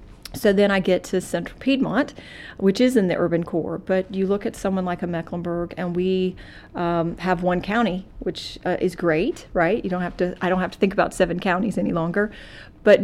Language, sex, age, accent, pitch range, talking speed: English, female, 40-59, American, 170-195 Hz, 210 wpm